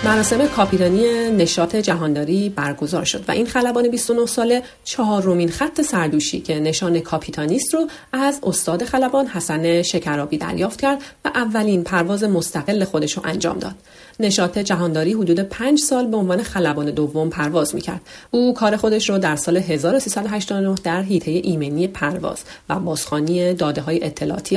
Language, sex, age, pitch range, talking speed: Persian, female, 40-59, 160-225 Hz, 150 wpm